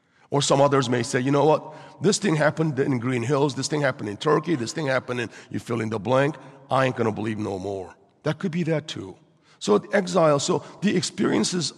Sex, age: male, 50-69